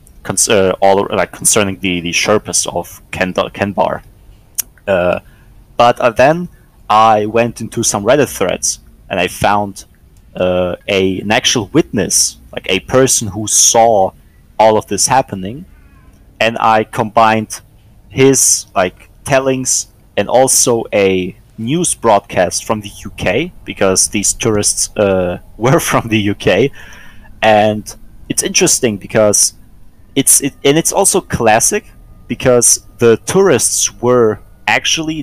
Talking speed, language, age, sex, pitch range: 125 wpm, English, 30-49, male, 100-125 Hz